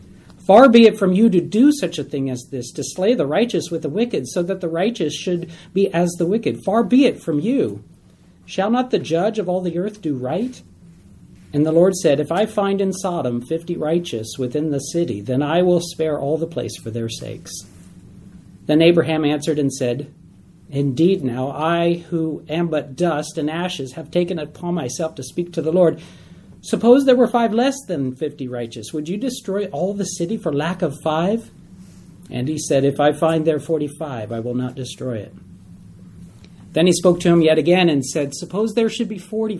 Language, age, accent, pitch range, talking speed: English, 50-69, American, 130-180 Hz, 205 wpm